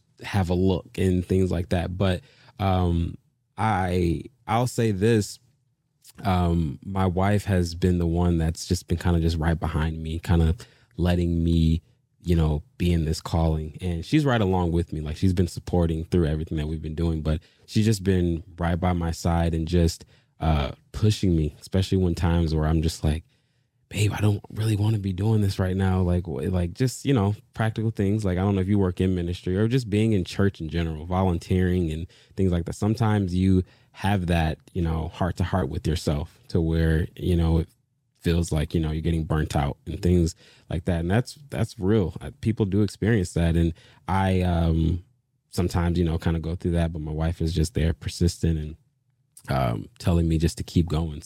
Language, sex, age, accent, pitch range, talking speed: English, male, 20-39, American, 85-110 Hz, 205 wpm